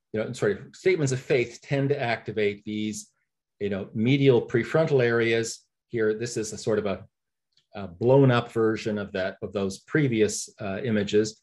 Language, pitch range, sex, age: English, 105-135 Hz, male, 40-59